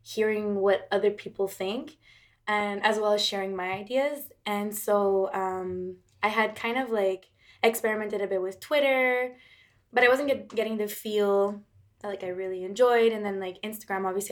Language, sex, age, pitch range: English, female, 10-29, 190-215 Hz